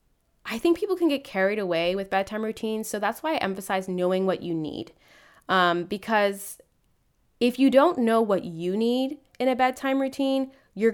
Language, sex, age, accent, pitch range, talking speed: English, female, 20-39, American, 165-215 Hz, 180 wpm